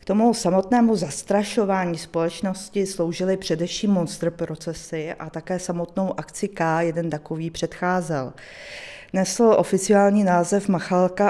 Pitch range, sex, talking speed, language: 175-200 Hz, female, 110 wpm, Czech